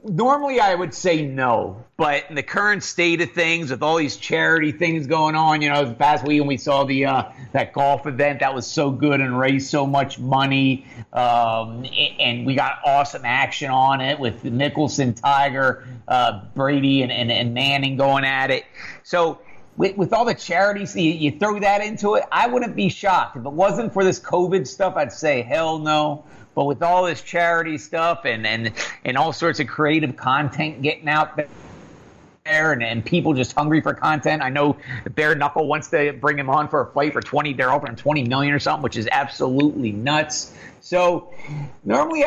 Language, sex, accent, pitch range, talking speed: English, male, American, 135-170 Hz, 195 wpm